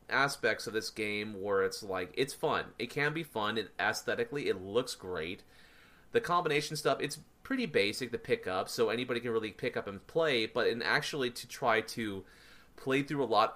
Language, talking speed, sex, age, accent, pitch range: English, 200 wpm, male, 30-49, American, 105-150 Hz